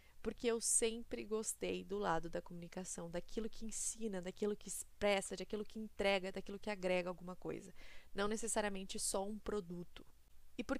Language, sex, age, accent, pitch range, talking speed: Portuguese, female, 20-39, Brazilian, 175-220 Hz, 160 wpm